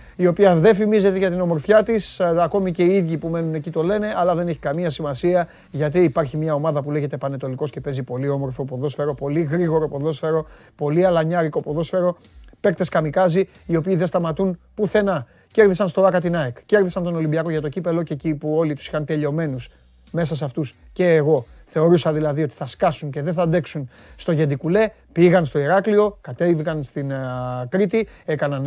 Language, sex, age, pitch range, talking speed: Greek, male, 30-49, 145-180 Hz, 185 wpm